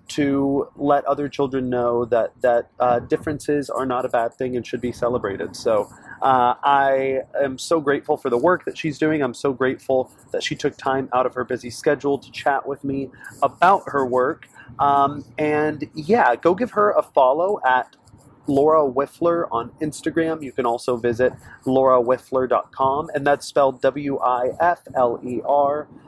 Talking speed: 165 wpm